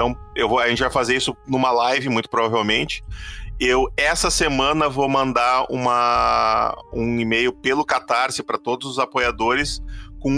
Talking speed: 140 wpm